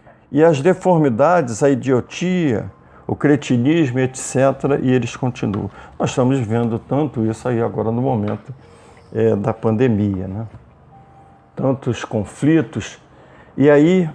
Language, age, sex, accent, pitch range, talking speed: Portuguese, 50-69, male, Brazilian, 110-130 Hz, 120 wpm